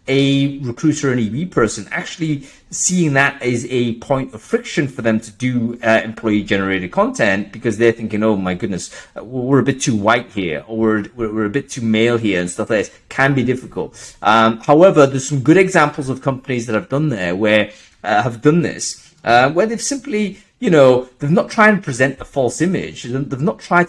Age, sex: 30-49, male